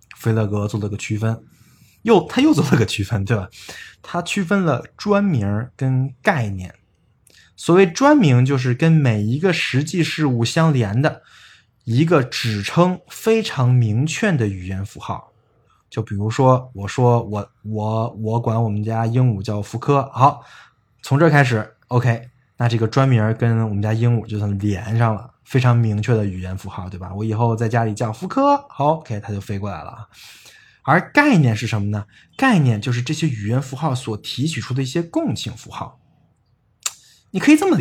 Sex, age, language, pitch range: male, 20-39, Chinese, 110-140 Hz